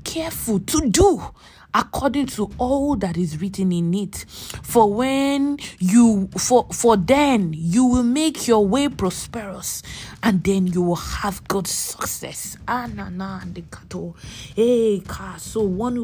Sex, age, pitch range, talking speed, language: female, 20-39, 190-240 Hz, 120 wpm, English